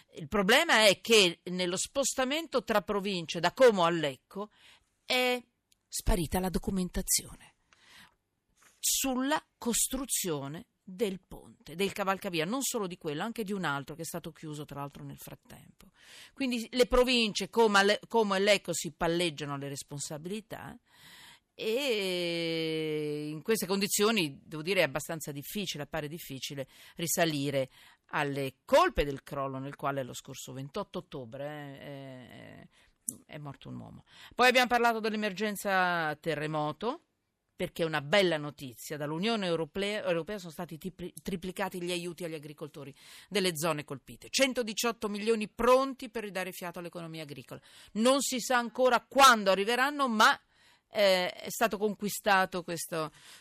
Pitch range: 160-225 Hz